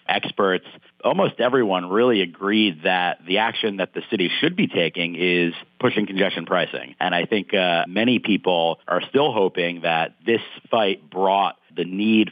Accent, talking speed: American, 160 wpm